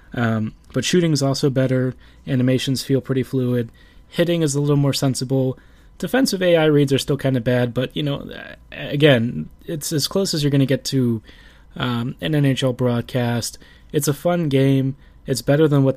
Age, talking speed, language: 20-39, 185 wpm, English